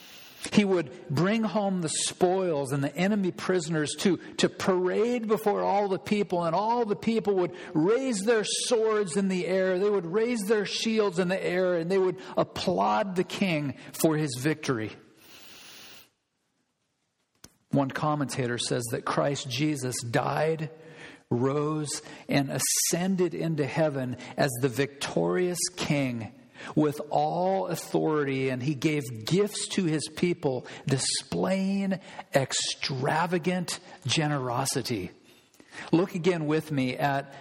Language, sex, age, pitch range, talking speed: English, male, 50-69, 140-185 Hz, 125 wpm